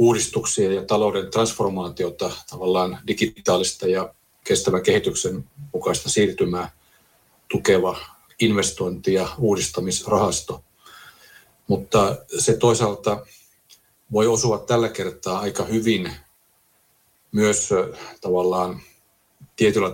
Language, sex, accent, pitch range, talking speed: Finnish, male, native, 90-115 Hz, 80 wpm